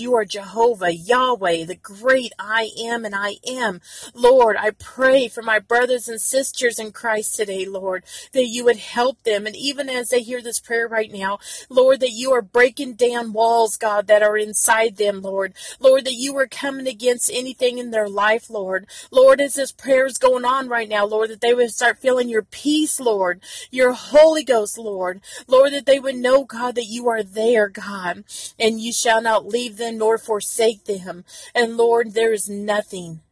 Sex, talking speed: female, 195 wpm